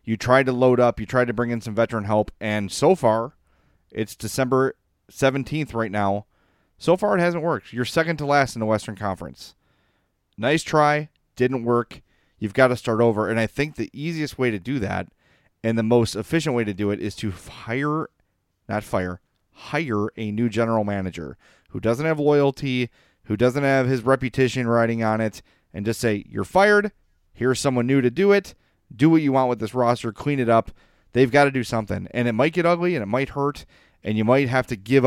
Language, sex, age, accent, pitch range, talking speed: English, male, 30-49, American, 105-135 Hz, 210 wpm